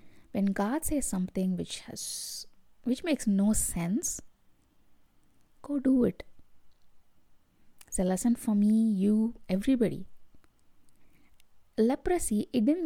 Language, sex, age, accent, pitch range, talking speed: English, female, 20-39, Indian, 200-250 Hz, 105 wpm